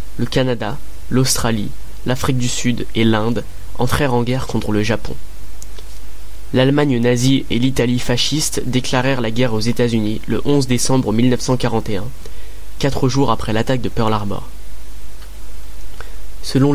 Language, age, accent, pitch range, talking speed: French, 20-39, French, 110-130 Hz, 130 wpm